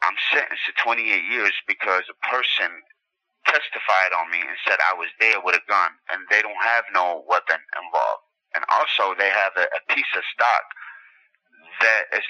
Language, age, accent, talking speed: English, 30-49, American, 180 wpm